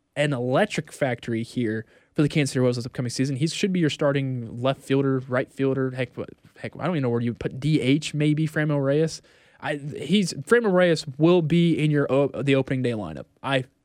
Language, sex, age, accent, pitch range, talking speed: English, male, 20-39, American, 135-175 Hz, 210 wpm